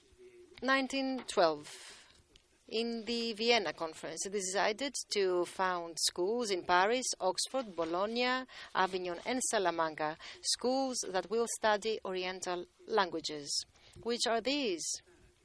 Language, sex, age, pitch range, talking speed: French, female, 40-59, 175-255 Hz, 100 wpm